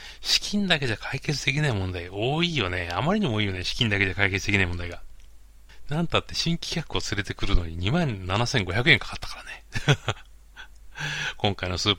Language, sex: Japanese, male